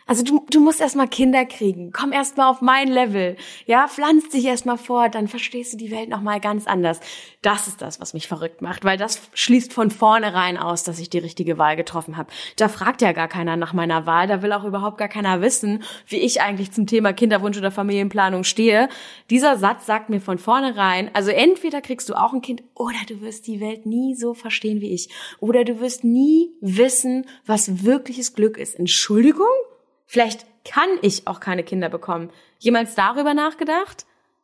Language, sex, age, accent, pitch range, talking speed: German, female, 20-39, German, 185-250 Hz, 195 wpm